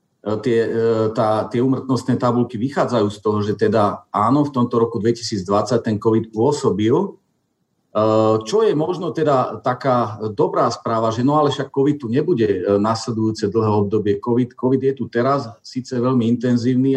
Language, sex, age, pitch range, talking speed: Slovak, male, 40-59, 115-140 Hz, 150 wpm